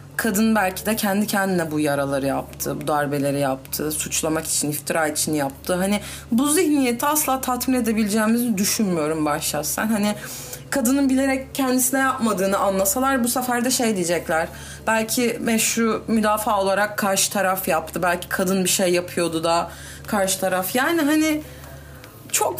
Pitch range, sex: 185-245 Hz, female